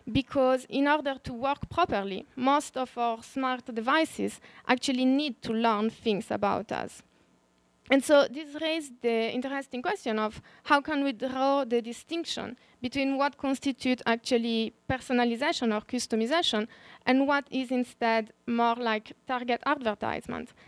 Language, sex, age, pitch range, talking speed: Portuguese, female, 20-39, 225-270 Hz, 135 wpm